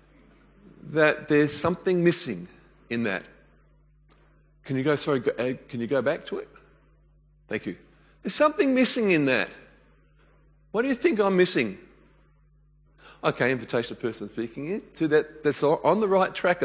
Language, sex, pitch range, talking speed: English, male, 115-155 Hz, 150 wpm